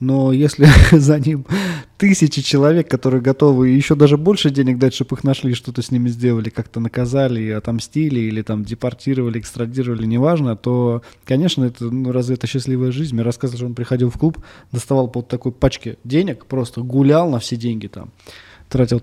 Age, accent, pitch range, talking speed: 20-39, native, 115-145 Hz, 175 wpm